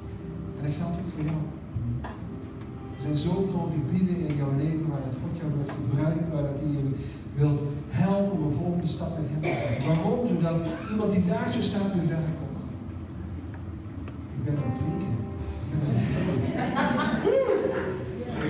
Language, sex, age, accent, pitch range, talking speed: Dutch, male, 50-69, Dutch, 130-190 Hz, 160 wpm